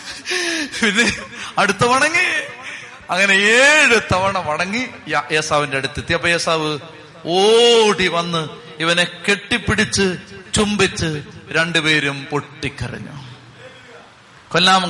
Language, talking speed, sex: Malayalam, 75 wpm, male